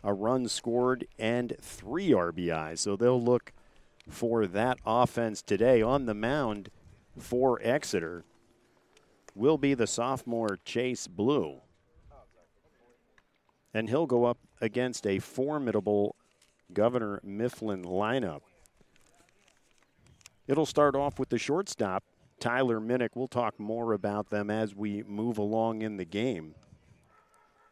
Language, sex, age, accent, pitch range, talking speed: English, male, 50-69, American, 100-125 Hz, 115 wpm